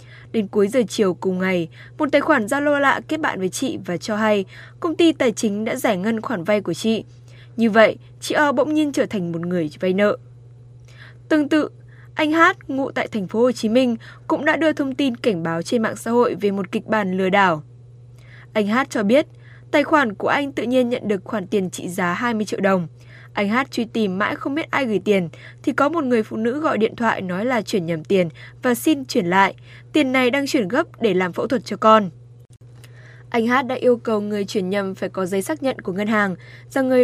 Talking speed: 235 wpm